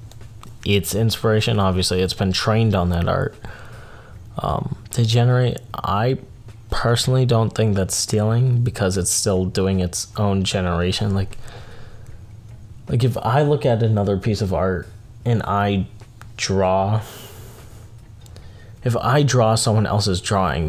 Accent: American